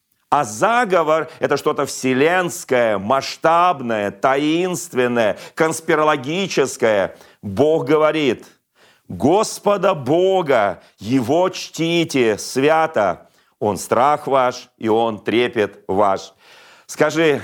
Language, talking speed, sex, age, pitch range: Russian, 80 wpm, male, 40-59, 130-170 Hz